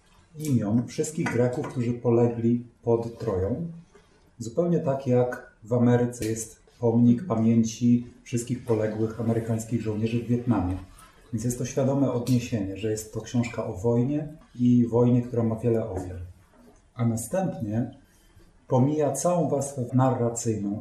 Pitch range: 115-125 Hz